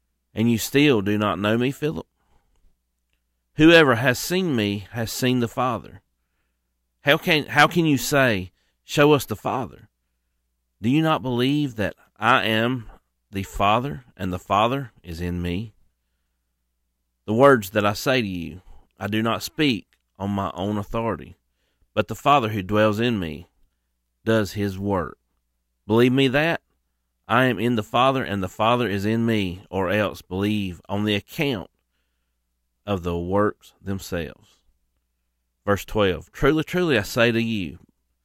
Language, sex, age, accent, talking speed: English, male, 40-59, American, 155 wpm